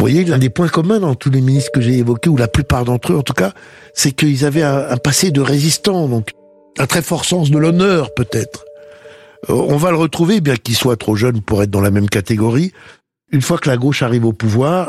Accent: French